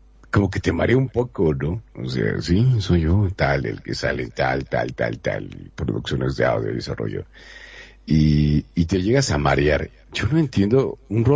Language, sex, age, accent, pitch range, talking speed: Spanish, male, 50-69, Mexican, 75-95 Hz, 185 wpm